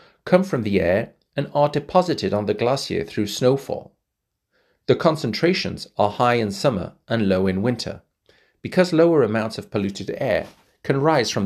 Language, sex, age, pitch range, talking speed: English, male, 40-59, 105-150 Hz, 160 wpm